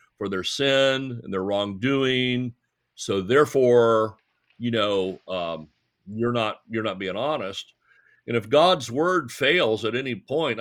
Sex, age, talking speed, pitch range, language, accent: male, 60-79, 140 wpm, 105-135 Hz, English, American